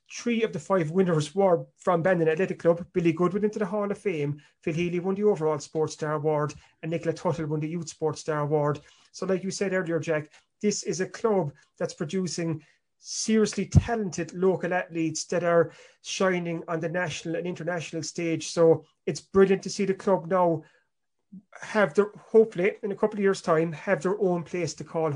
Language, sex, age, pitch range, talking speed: English, male, 30-49, 160-190 Hz, 195 wpm